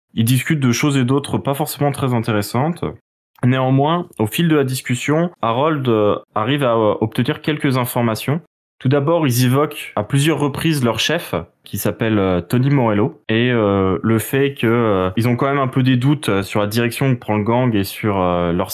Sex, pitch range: male, 100-125 Hz